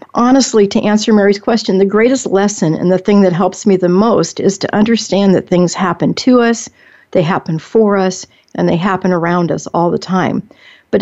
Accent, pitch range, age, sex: American, 180-210 Hz, 50-69, female